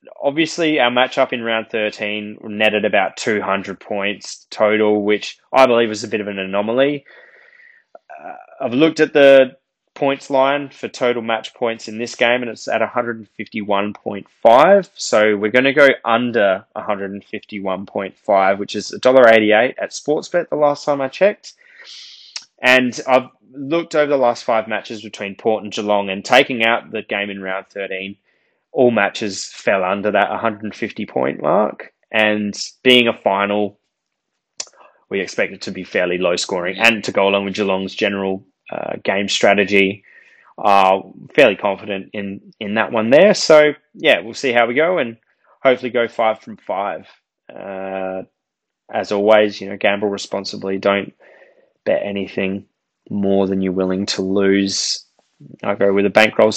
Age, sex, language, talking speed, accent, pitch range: 20-39, male, English, 155 wpm, Australian, 100-130 Hz